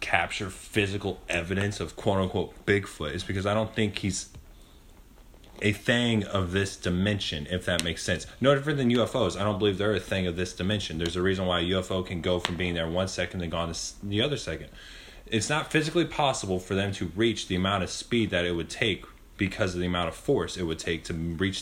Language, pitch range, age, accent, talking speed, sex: English, 90-110 Hz, 20-39, American, 220 wpm, male